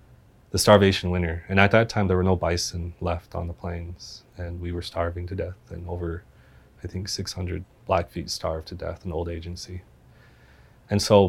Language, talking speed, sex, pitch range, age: English, 185 wpm, male, 85-95 Hz, 30-49